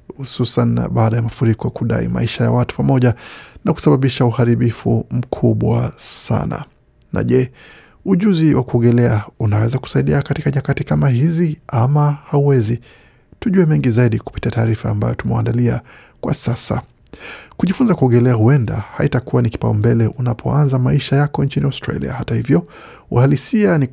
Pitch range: 115-140 Hz